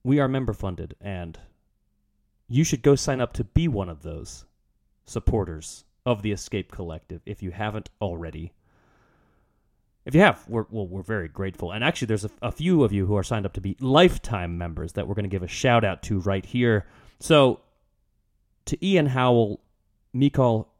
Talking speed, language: 185 wpm, English